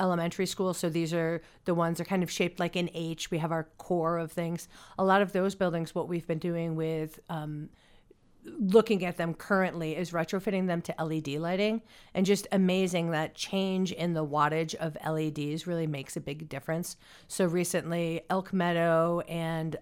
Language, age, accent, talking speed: English, 40-59, American, 190 wpm